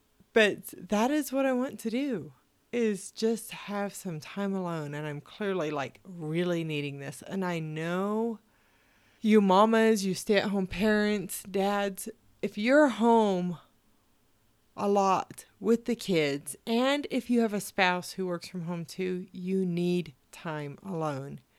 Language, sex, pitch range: English, female, 150-210 Hz